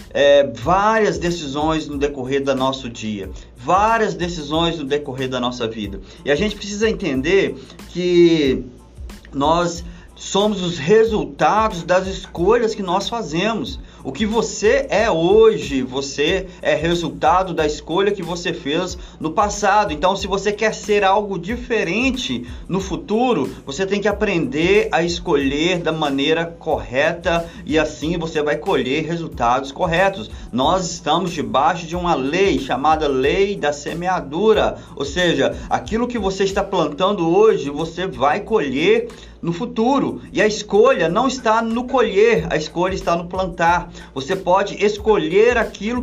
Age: 20-39